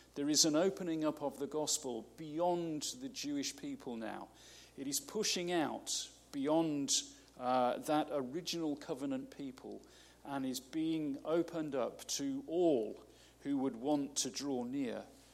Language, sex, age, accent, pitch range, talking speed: English, male, 40-59, British, 135-160 Hz, 140 wpm